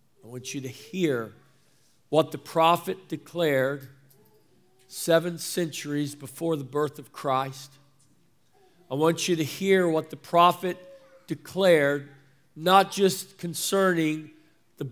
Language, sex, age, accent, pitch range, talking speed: English, male, 50-69, American, 130-175 Hz, 115 wpm